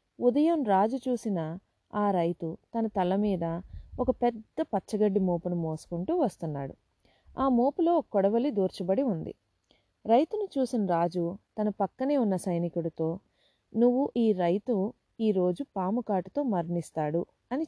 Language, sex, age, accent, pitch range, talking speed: Telugu, female, 30-49, native, 175-245 Hz, 120 wpm